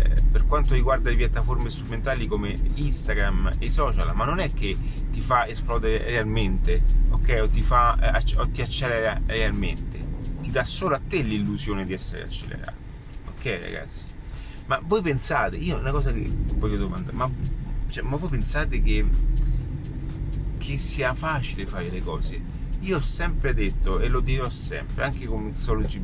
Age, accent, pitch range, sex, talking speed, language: 30-49, native, 105-130 Hz, male, 165 wpm, Italian